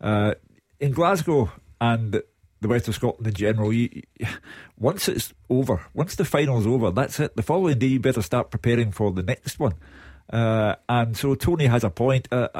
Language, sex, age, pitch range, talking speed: English, male, 50-69, 105-130 Hz, 185 wpm